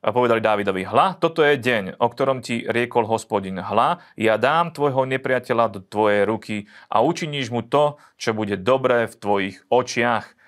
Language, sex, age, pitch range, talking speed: Slovak, male, 30-49, 105-125 Hz, 170 wpm